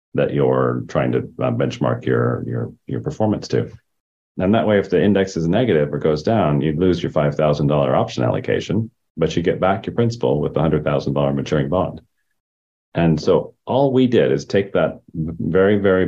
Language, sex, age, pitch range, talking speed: English, male, 40-59, 70-90 Hz, 175 wpm